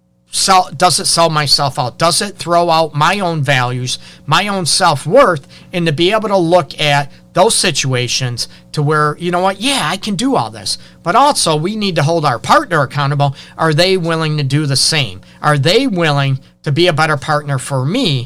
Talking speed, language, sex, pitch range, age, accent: 205 wpm, English, male, 140-170 Hz, 40-59, American